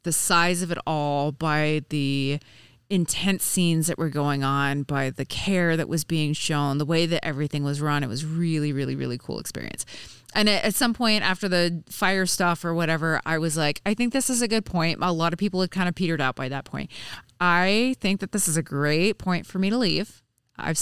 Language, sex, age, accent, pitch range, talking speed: English, female, 30-49, American, 145-180 Hz, 225 wpm